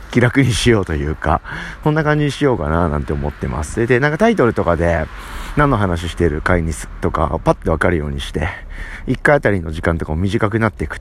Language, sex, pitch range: Japanese, male, 85-125 Hz